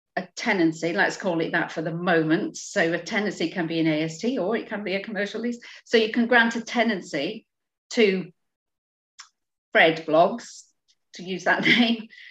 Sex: female